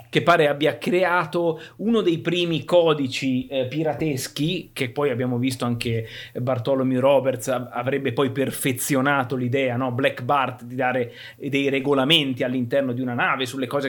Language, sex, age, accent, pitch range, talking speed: Italian, male, 30-49, native, 130-165 Hz, 145 wpm